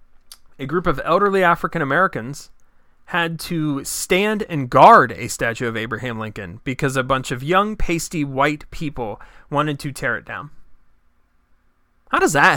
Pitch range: 110-180 Hz